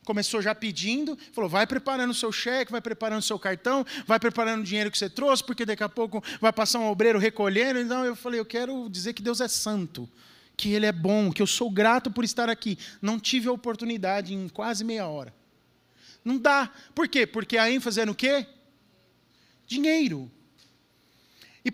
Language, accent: Portuguese, Brazilian